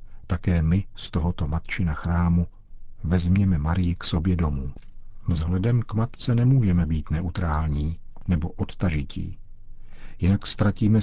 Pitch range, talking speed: 85-100 Hz, 115 wpm